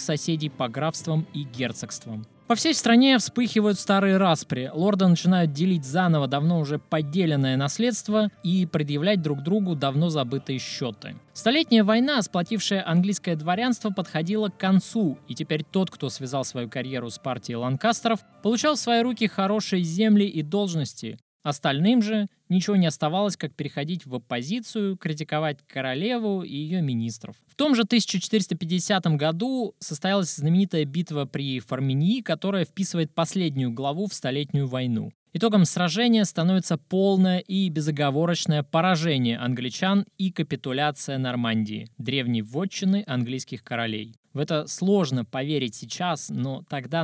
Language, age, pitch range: Russian, 20-39, 140-195 Hz